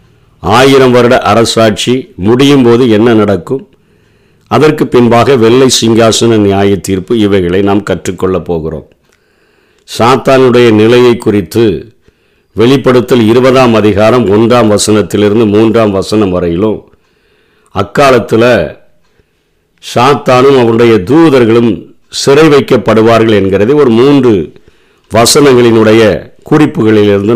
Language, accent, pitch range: Tamil, native, 110-130 Hz